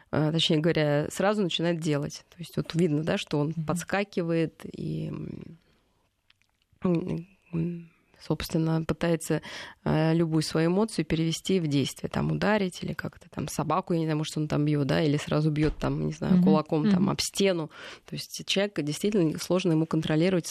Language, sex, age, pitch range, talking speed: Russian, female, 20-39, 155-185 Hz, 155 wpm